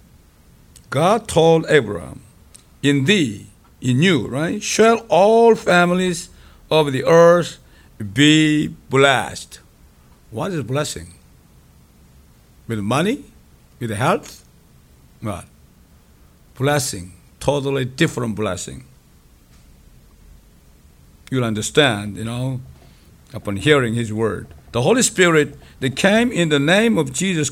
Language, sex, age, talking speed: English, male, 60-79, 100 wpm